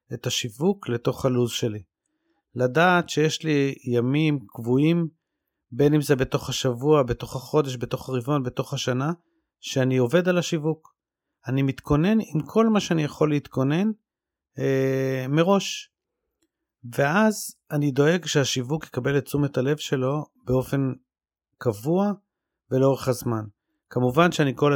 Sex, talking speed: male, 125 wpm